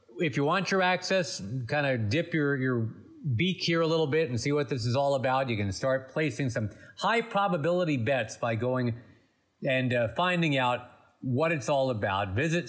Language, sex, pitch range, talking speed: English, male, 110-150 Hz, 190 wpm